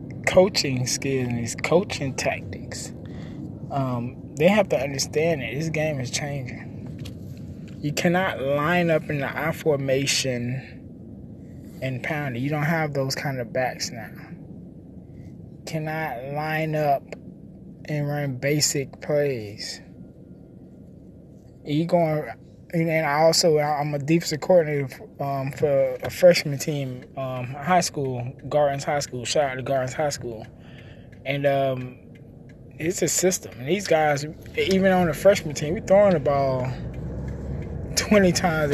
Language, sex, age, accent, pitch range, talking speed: English, male, 20-39, American, 125-155 Hz, 140 wpm